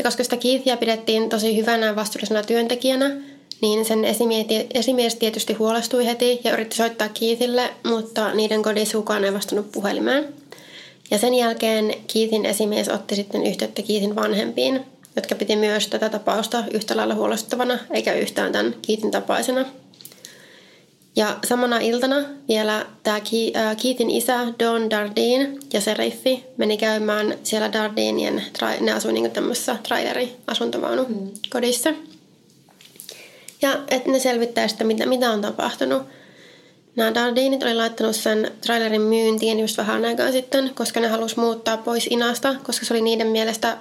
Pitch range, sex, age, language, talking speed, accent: 215-245 Hz, female, 20-39, Finnish, 135 wpm, native